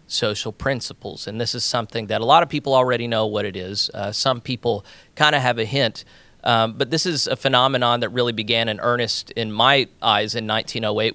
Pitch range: 105-125 Hz